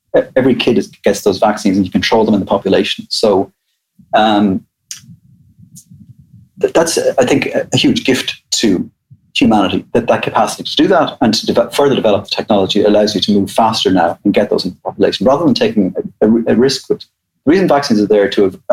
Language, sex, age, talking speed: English, male, 30-49, 205 wpm